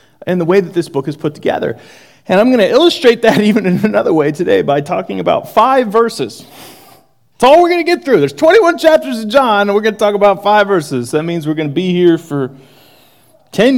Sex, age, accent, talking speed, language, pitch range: male, 30-49, American, 235 wpm, English, 140-210 Hz